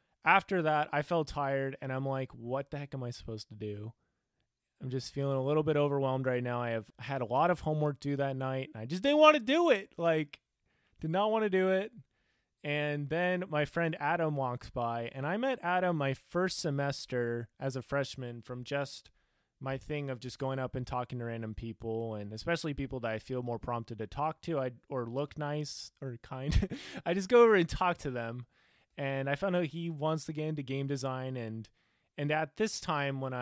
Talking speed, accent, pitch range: 220 wpm, American, 120-150 Hz